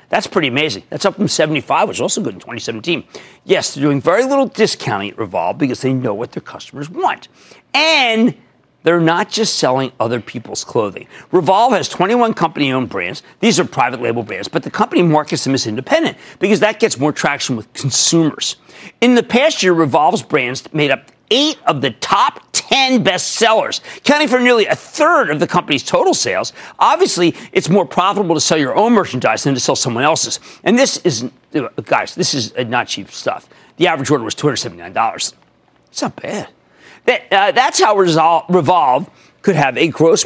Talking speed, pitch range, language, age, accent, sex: 190 wpm, 140-235 Hz, English, 40-59, American, male